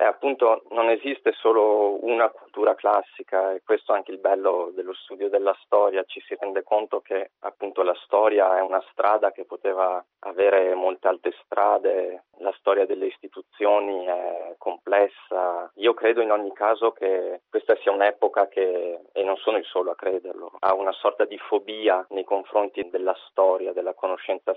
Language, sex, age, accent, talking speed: Italian, male, 20-39, native, 170 wpm